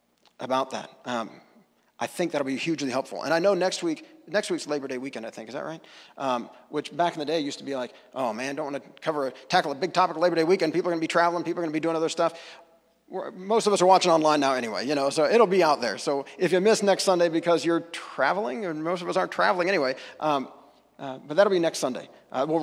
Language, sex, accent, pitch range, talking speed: English, male, American, 130-175 Hz, 275 wpm